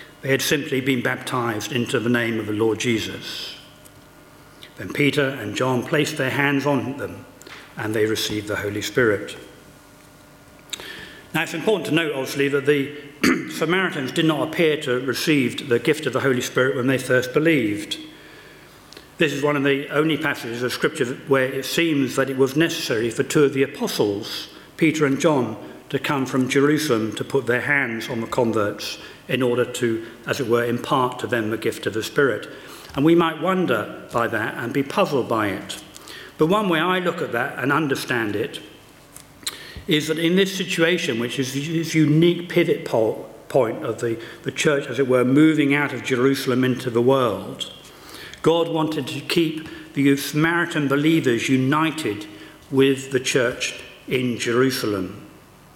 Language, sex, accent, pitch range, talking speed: English, male, British, 125-155 Hz, 170 wpm